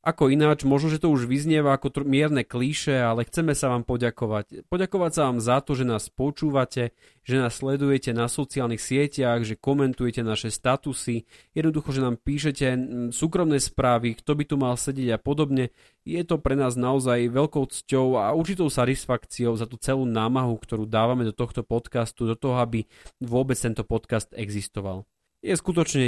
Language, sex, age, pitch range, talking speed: Slovak, male, 30-49, 115-140 Hz, 175 wpm